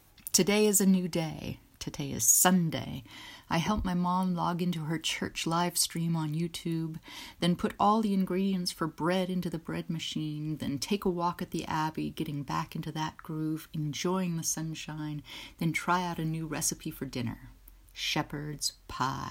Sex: female